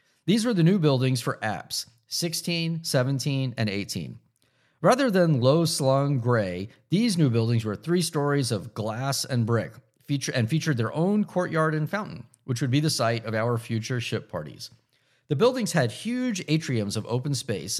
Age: 50-69